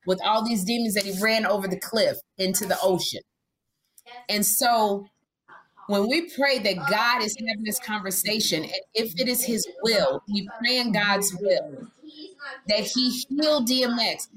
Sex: female